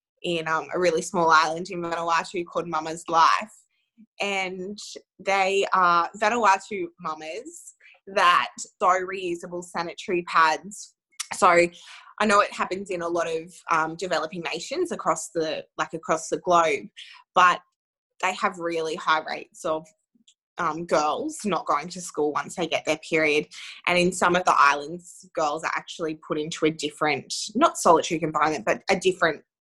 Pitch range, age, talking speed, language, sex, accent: 160-195 Hz, 20-39, 155 wpm, English, female, Australian